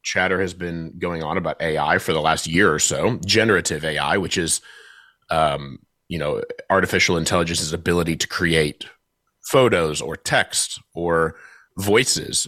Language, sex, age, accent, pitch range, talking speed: English, male, 30-49, American, 85-110 Hz, 145 wpm